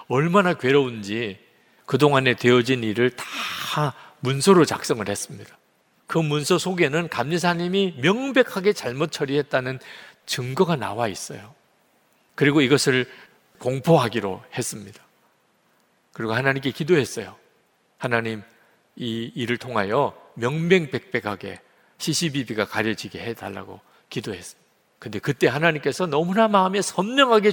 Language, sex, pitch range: Korean, male, 120-175 Hz